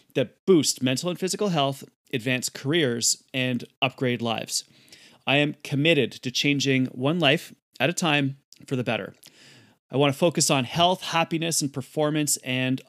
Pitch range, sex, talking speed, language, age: 125-150 Hz, male, 160 wpm, English, 30-49